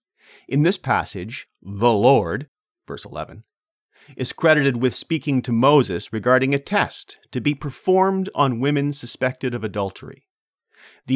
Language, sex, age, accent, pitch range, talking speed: English, male, 40-59, American, 110-140 Hz, 135 wpm